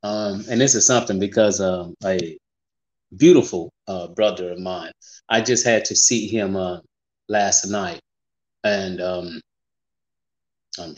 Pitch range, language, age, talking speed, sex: 105-130 Hz, English, 30-49, 135 wpm, male